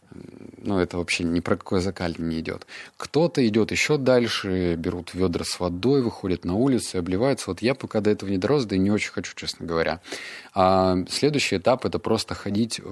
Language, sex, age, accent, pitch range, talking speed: Russian, male, 30-49, native, 90-110 Hz, 200 wpm